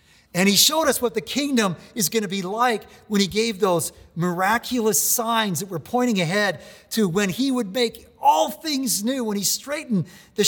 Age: 50-69